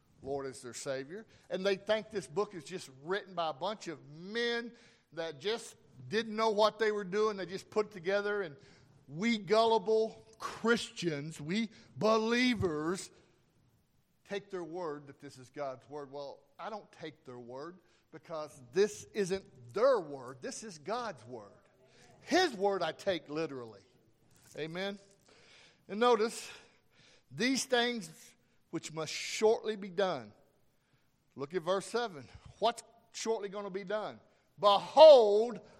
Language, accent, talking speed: English, American, 140 wpm